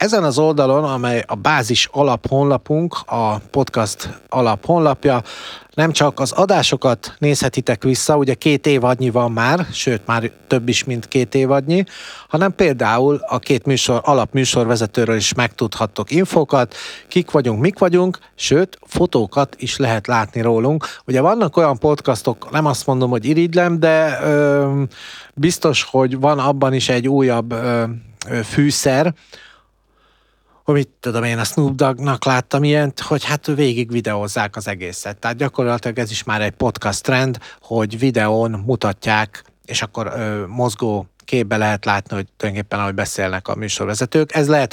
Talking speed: 150 wpm